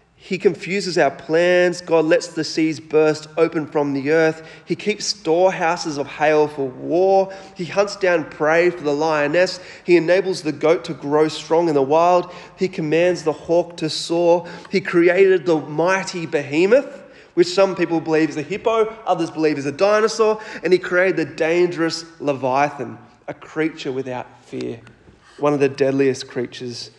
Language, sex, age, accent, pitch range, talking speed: English, male, 30-49, Australian, 150-190 Hz, 165 wpm